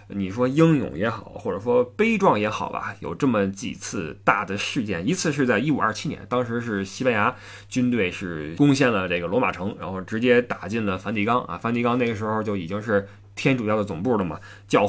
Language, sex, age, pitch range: Chinese, male, 20-39, 100-145 Hz